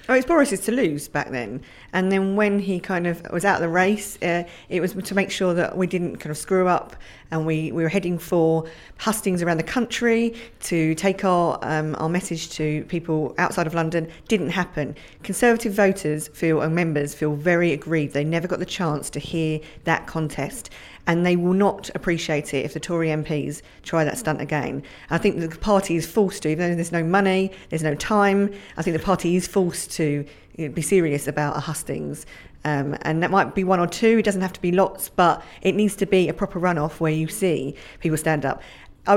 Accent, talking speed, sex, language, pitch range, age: British, 215 wpm, female, English, 155-190 Hz, 40-59